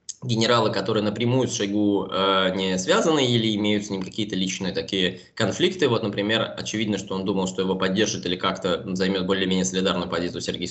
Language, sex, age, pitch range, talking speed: Russian, male, 20-39, 95-110 Hz, 180 wpm